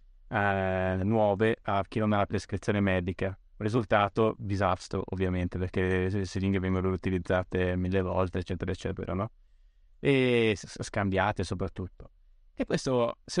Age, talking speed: 20-39, 125 wpm